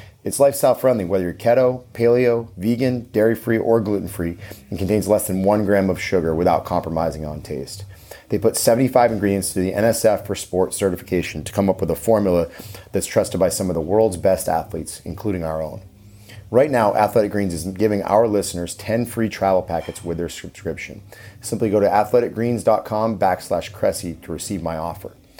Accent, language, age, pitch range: American, English, 30-49, 90-110 Hz